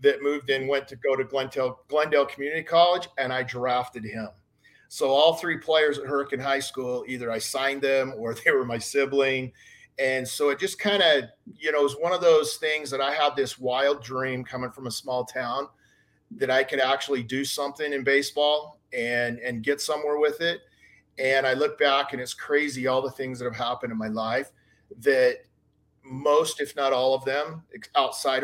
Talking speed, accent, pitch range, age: 200 wpm, American, 130-150 Hz, 40-59